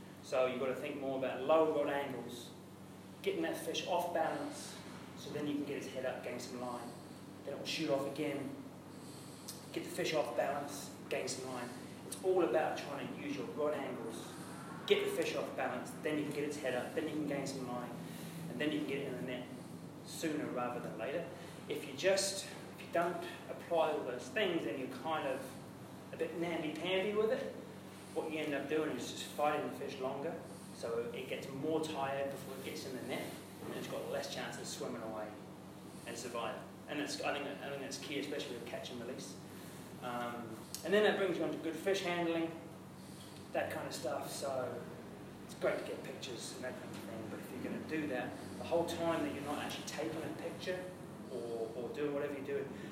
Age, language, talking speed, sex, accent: 30-49, English, 215 wpm, male, British